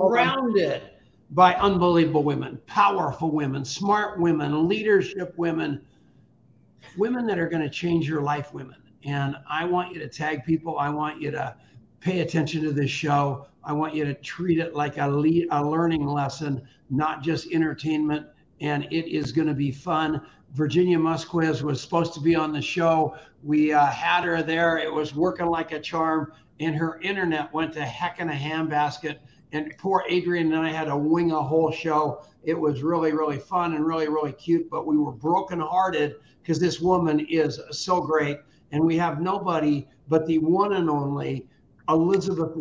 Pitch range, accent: 150-170 Hz, American